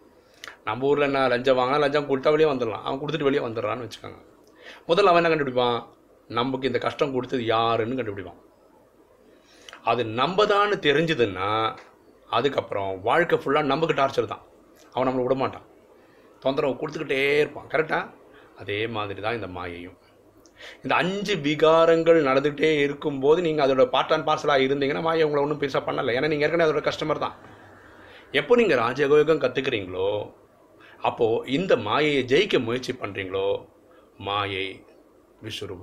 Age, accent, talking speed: 30-49, native, 135 wpm